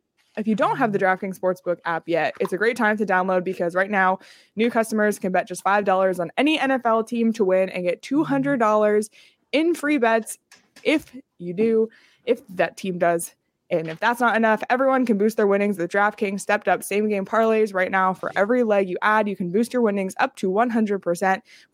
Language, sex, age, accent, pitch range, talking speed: English, female, 20-39, American, 190-235 Hz, 200 wpm